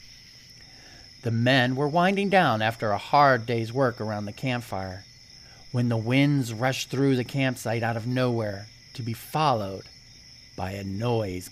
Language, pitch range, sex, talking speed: English, 115-145 Hz, male, 150 wpm